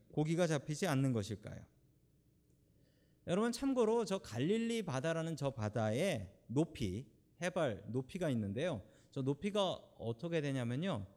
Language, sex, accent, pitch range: Korean, male, native, 125-190 Hz